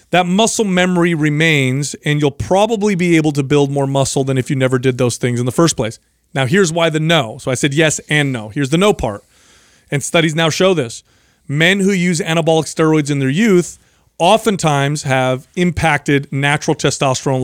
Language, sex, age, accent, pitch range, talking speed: English, male, 30-49, American, 135-175 Hz, 195 wpm